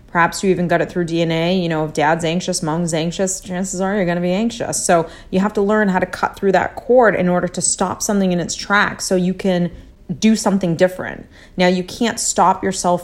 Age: 30-49